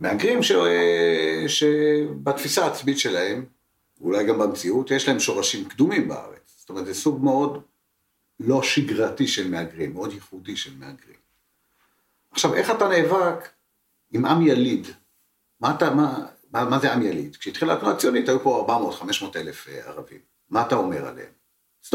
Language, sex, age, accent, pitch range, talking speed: Hebrew, male, 60-79, native, 130-170 Hz, 145 wpm